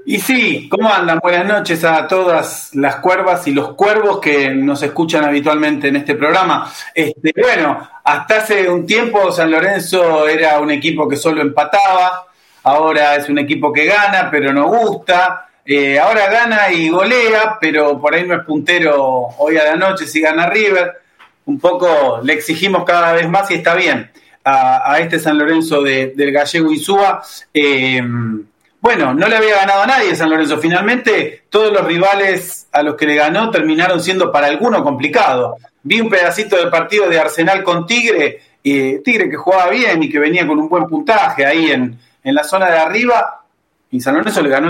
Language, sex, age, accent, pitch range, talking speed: Spanish, male, 30-49, Argentinian, 150-195 Hz, 180 wpm